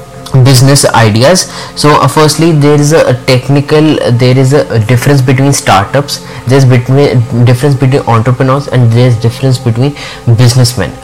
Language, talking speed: English, 140 wpm